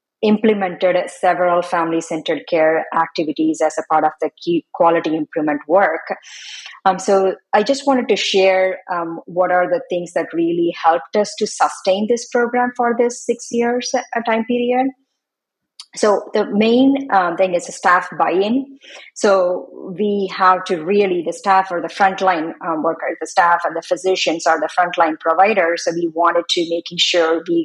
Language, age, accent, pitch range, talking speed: English, 30-49, Indian, 170-210 Hz, 165 wpm